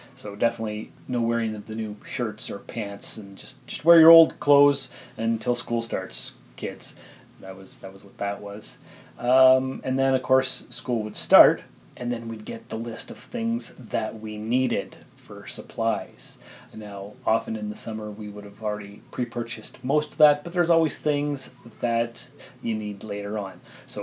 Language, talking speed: English, 175 wpm